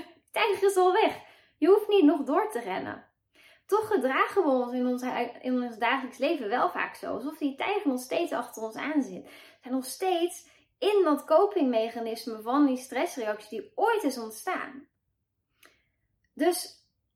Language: Dutch